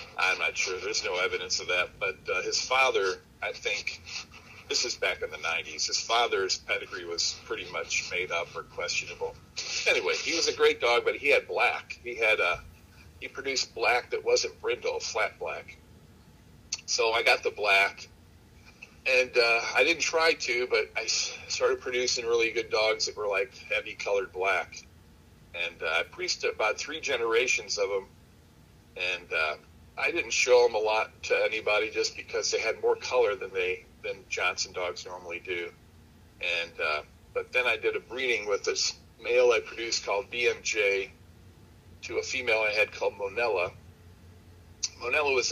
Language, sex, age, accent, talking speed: English, male, 50-69, American, 175 wpm